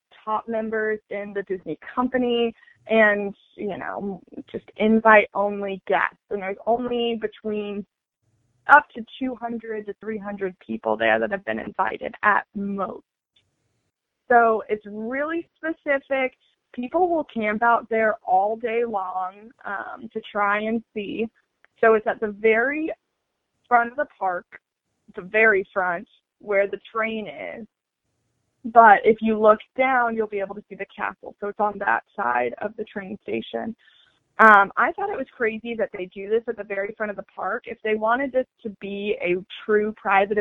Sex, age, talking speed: female, 20-39, 160 wpm